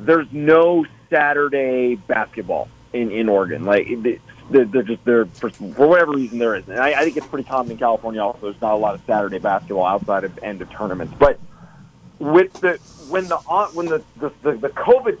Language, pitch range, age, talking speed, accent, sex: English, 120-155 Hz, 40-59, 195 wpm, American, male